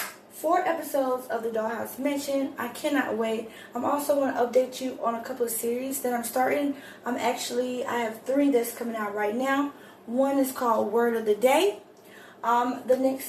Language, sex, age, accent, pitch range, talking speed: English, female, 10-29, American, 230-275 Hz, 200 wpm